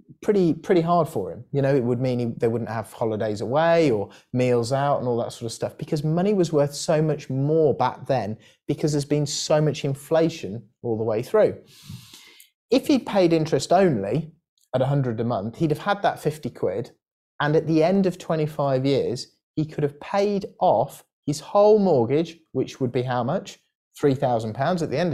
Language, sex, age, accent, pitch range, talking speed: English, male, 30-49, British, 120-160 Hz, 205 wpm